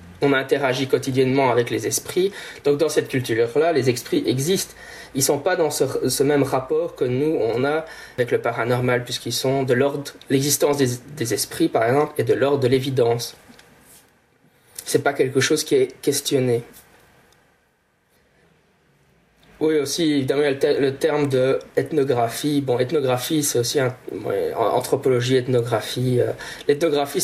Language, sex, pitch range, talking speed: French, male, 125-170 Hz, 160 wpm